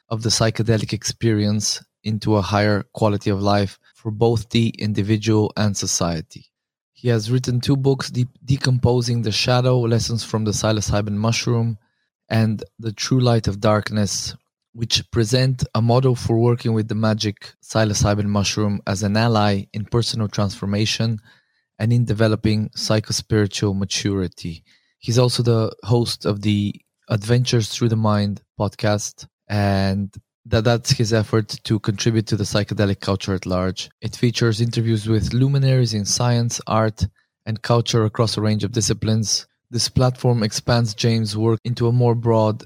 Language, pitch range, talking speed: English, 105-120 Hz, 150 wpm